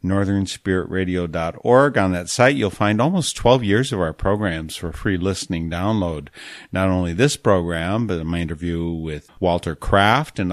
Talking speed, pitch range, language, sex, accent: 155 wpm, 85-105 Hz, English, male, American